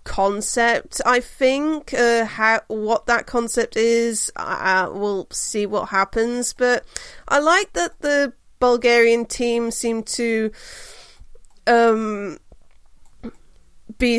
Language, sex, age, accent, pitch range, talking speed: English, female, 30-49, British, 220-280 Hz, 100 wpm